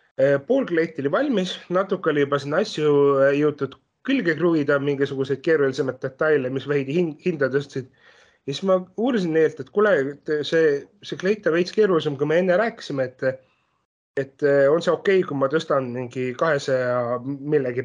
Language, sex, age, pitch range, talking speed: English, male, 30-49, 135-185 Hz, 150 wpm